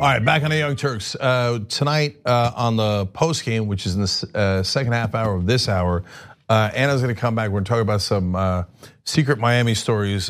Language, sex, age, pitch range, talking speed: English, male, 40-59, 100-125 Hz, 200 wpm